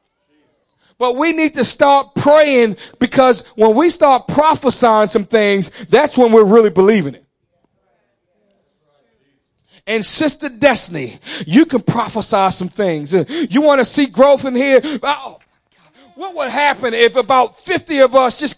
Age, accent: 40-59, American